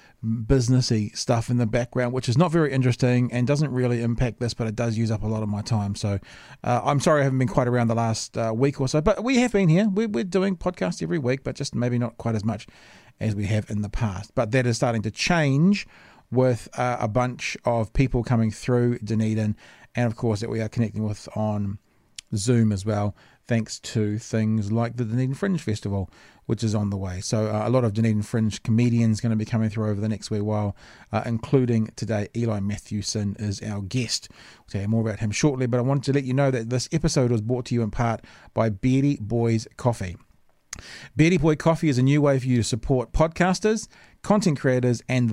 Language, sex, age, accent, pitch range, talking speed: English, male, 40-59, Australian, 110-135 Hz, 230 wpm